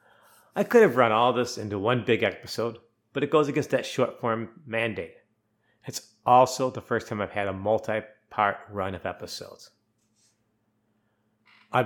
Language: English